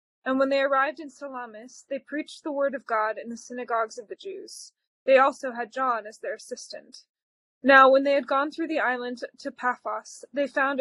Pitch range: 245-295 Hz